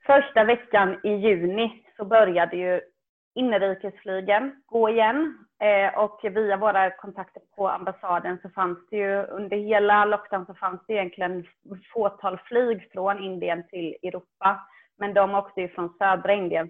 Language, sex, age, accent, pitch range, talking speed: Swedish, female, 30-49, native, 180-215 Hz, 145 wpm